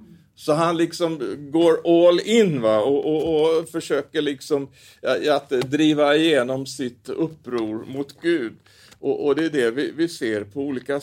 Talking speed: 150 wpm